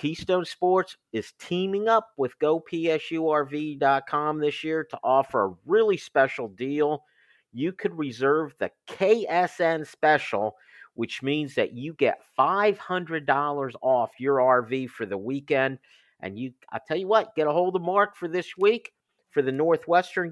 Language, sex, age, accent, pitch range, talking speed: English, male, 50-69, American, 135-165 Hz, 150 wpm